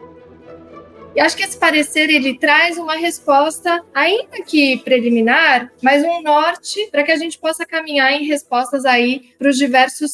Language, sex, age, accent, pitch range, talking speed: Portuguese, female, 20-39, Brazilian, 245-290 Hz, 160 wpm